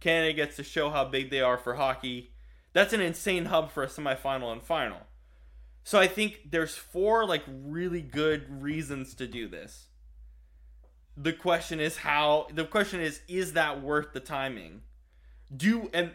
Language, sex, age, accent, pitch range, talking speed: English, male, 20-39, American, 125-170 Hz, 165 wpm